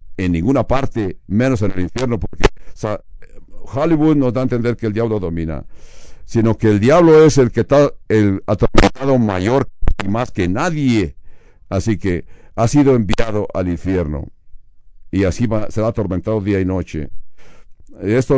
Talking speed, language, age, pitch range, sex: 165 wpm, English, 60-79, 100-130 Hz, male